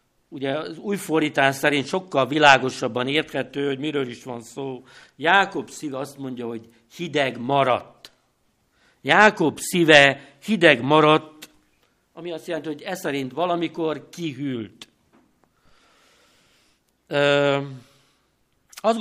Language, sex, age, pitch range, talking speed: Hungarian, male, 60-79, 130-170 Hz, 100 wpm